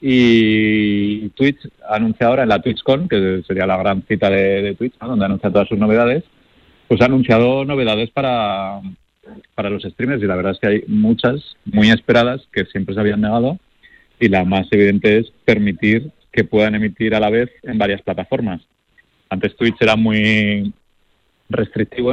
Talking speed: 170 wpm